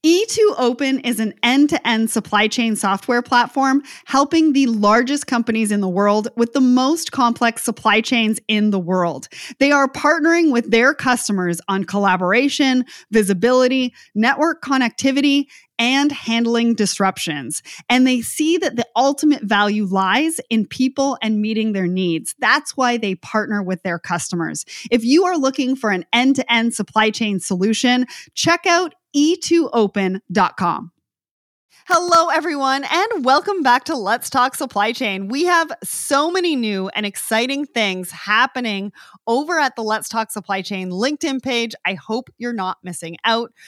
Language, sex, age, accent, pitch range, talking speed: English, female, 30-49, American, 205-275 Hz, 145 wpm